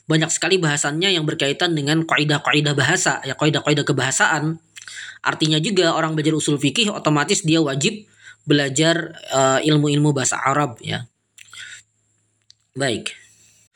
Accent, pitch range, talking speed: native, 145-170 Hz, 120 wpm